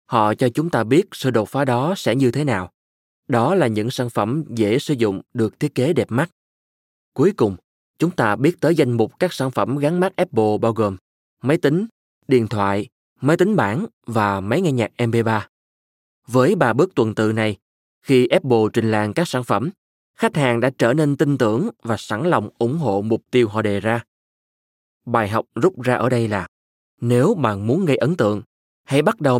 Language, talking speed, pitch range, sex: Vietnamese, 205 wpm, 105-145 Hz, male